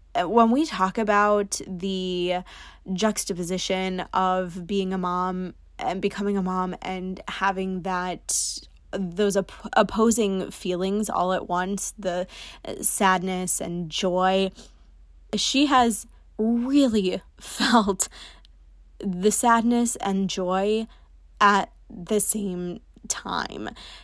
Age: 20-39